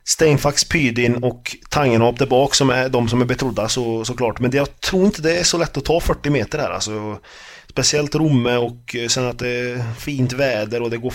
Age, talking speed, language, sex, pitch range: 20-39, 220 wpm, Swedish, male, 110-130 Hz